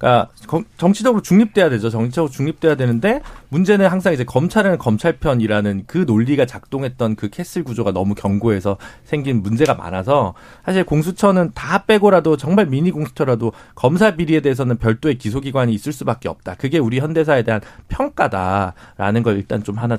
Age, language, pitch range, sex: 40-59, Korean, 115-175 Hz, male